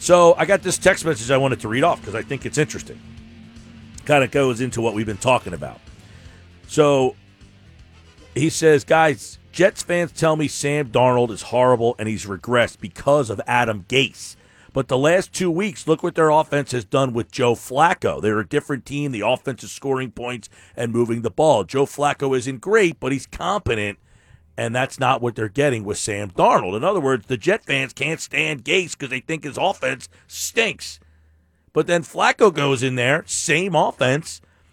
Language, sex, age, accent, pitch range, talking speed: English, male, 50-69, American, 115-165 Hz, 190 wpm